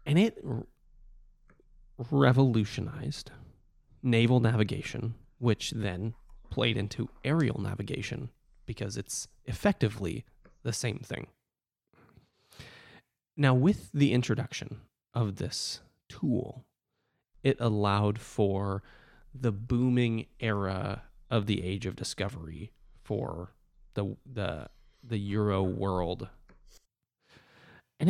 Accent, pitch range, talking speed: American, 110-135 Hz, 90 wpm